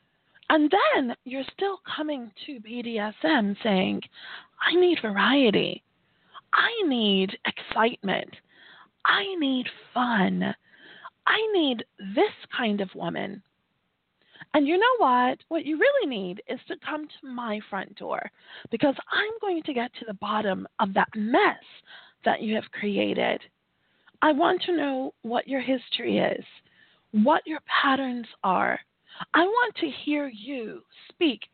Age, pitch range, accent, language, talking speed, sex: 30-49, 235-325 Hz, American, English, 135 wpm, female